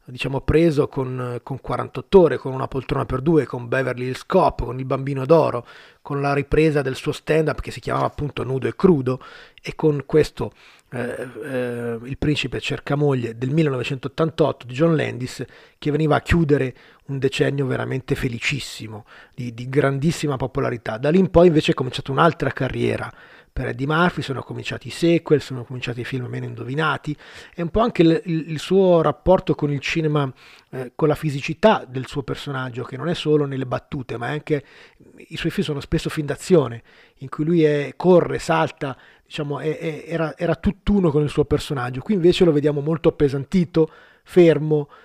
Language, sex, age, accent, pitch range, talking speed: Italian, male, 30-49, native, 130-160 Hz, 180 wpm